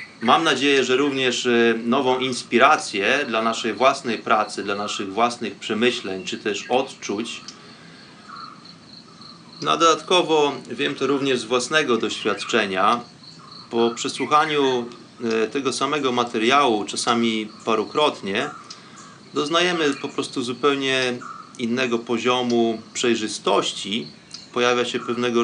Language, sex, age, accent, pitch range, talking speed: Polish, male, 30-49, native, 115-140 Hz, 100 wpm